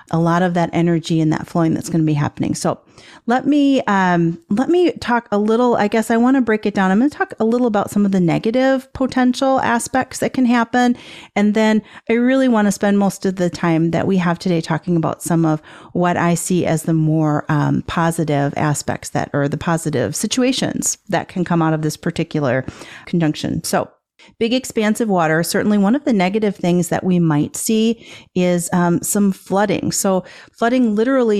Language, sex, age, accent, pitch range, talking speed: English, female, 40-59, American, 170-225 Hz, 205 wpm